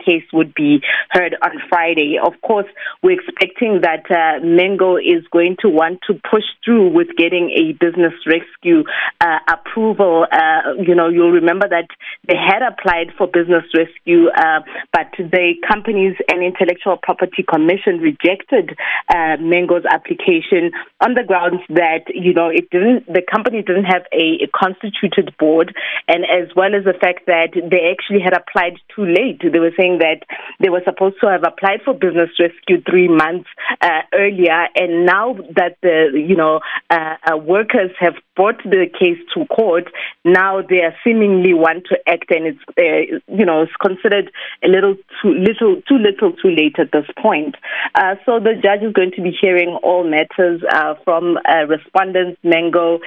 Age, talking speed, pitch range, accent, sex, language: 20-39, 175 wpm, 165-200 Hz, South African, female, English